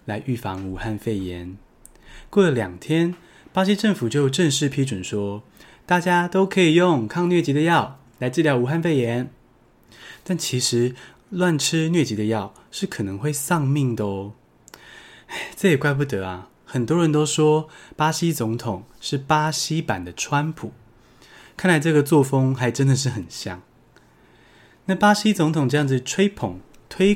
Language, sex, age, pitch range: Chinese, male, 20-39, 120-165 Hz